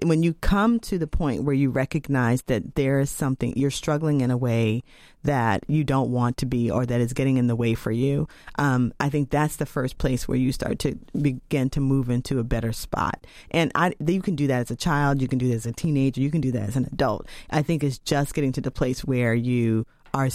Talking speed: 250 wpm